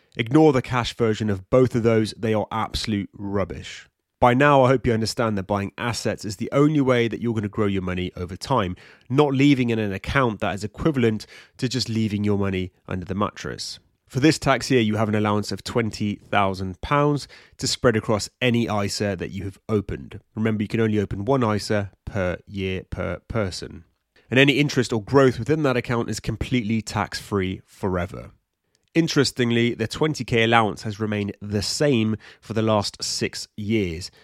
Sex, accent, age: male, British, 30-49